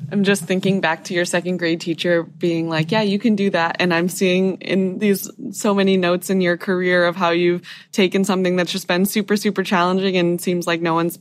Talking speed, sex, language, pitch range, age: 230 wpm, female, English, 160-190 Hz, 20-39